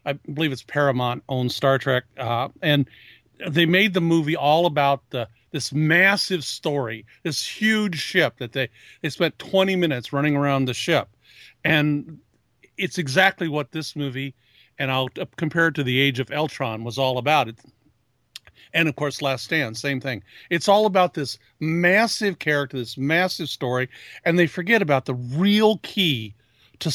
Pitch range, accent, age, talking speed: 130-180 Hz, American, 50-69, 165 wpm